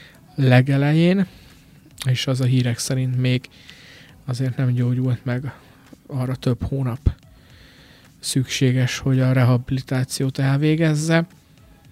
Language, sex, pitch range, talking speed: Hungarian, male, 125-140 Hz, 95 wpm